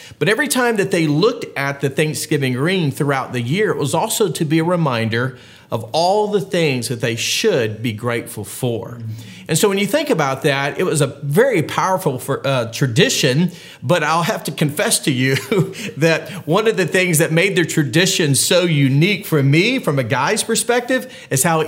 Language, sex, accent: English, male, American